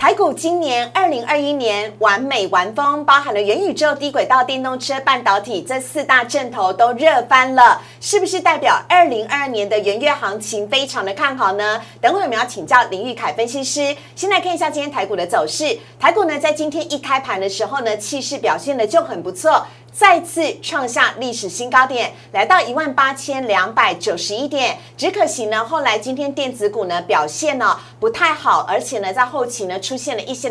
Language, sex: Chinese, female